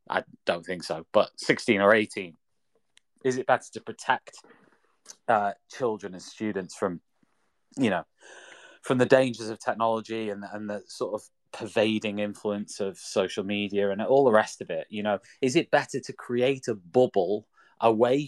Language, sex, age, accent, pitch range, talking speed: English, male, 20-39, British, 95-115 Hz, 165 wpm